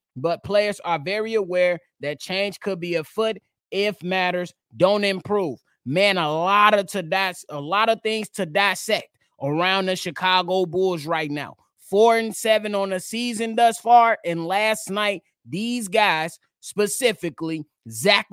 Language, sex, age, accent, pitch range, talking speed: English, male, 20-39, American, 170-210 Hz, 155 wpm